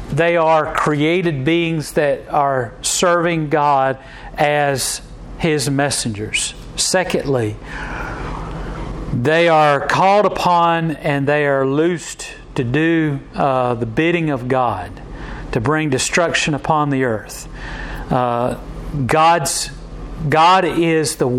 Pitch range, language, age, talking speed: 135-160 Hz, English, 40-59, 105 wpm